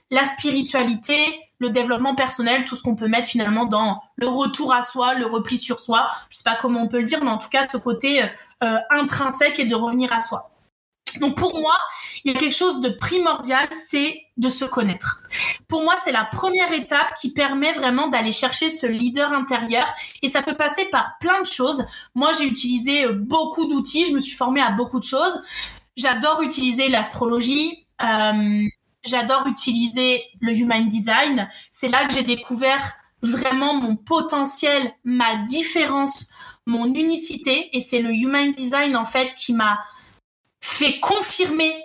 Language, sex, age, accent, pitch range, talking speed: French, female, 20-39, French, 245-315 Hz, 175 wpm